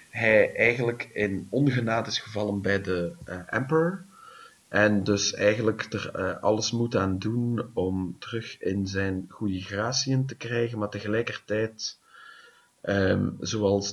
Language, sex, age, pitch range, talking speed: English, male, 30-49, 100-125 Hz, 135 wpm